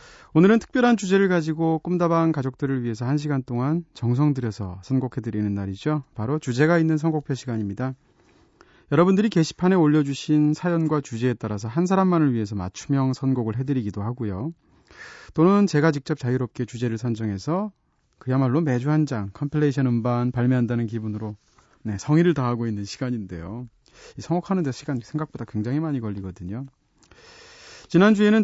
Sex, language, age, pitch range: male, Korean, 30-49, 115-165 Hz